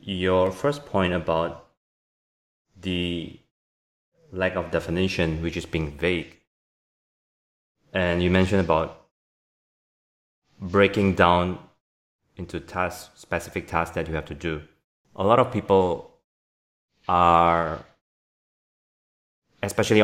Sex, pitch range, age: male, 80-95 Hz, 20-39